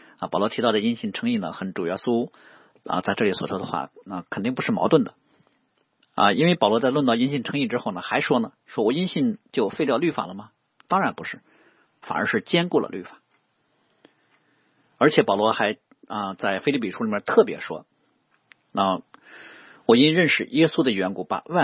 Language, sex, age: Chinese, male, 50-69